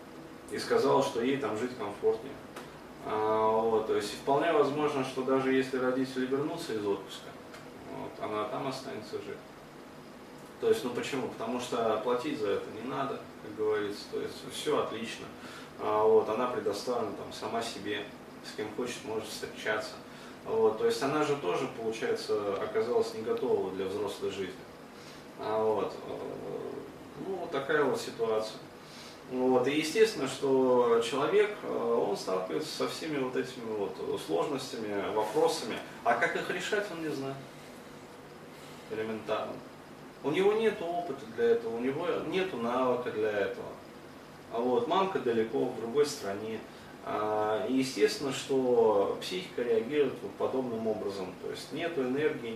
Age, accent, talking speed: 20-39, native, 145 wpm